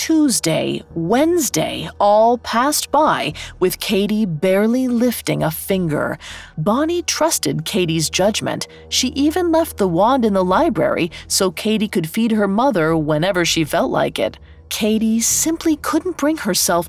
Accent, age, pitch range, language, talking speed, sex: American, 30-49, 175-250 Hz, English, 140 wpm, female